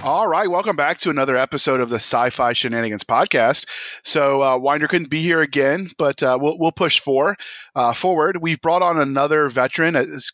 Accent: American